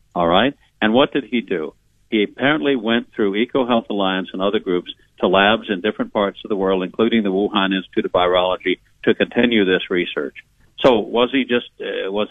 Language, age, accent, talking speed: English, 60-79, American, 195 wpm